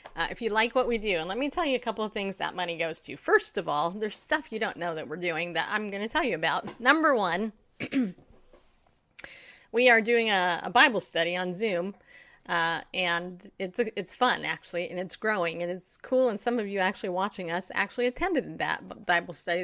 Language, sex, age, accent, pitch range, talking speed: English, female, 30-49, American, 175-230 Hz, 225 wpm